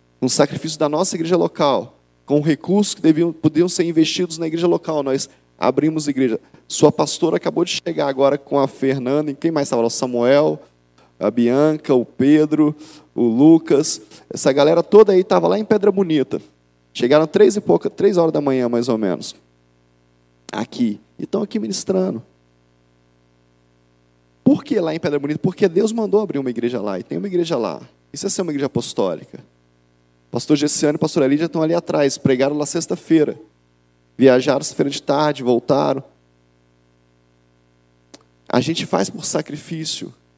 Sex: male